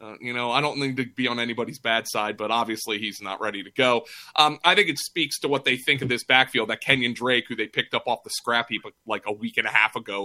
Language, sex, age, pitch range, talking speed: English, male, 30-49, 130-185 Hz, 285 wpm